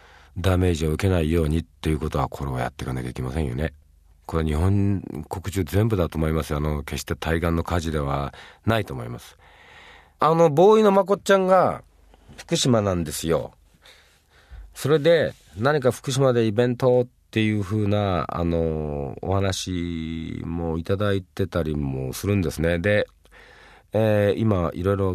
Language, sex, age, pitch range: Japanese, male, 40-59, 75-110 Hz